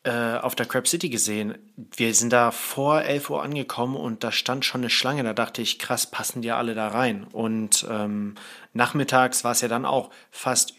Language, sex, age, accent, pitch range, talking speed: German, male, 30-49, German, 120-150 Hz, 200 wpm